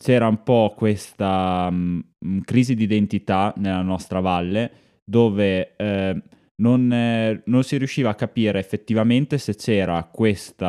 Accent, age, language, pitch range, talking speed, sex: native, 10-29, Italian, 90-105 Hz, 135 wpm, male